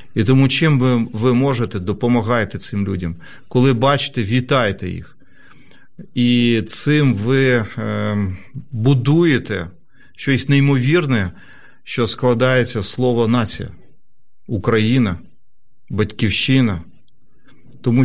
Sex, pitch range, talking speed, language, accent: male, 105-130 Hz, 90 wpm, Ukrainian, native